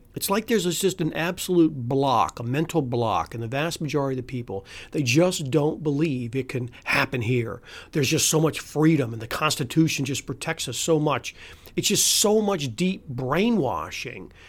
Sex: male